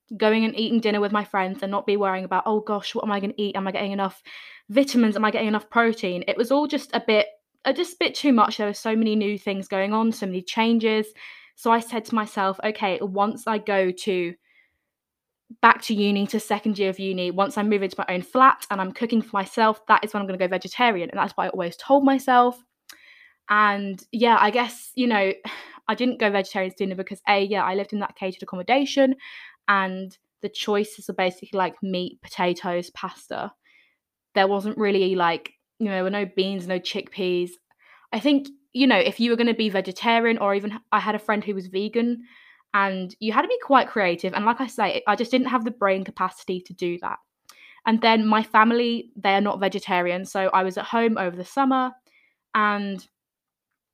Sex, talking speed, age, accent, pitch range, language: female, 215 wpm, 20-39, British, 195-235 Hz, English